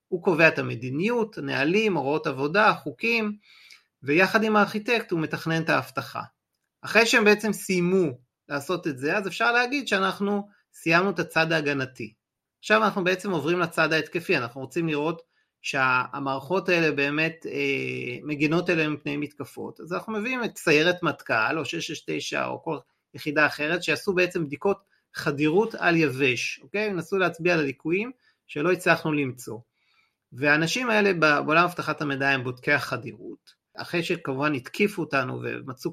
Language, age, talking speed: Hebrew, 30-49, 140 wpm